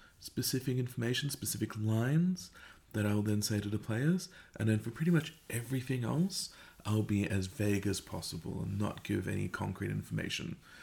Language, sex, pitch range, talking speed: English, male, 95-115 Hz, 165 wpm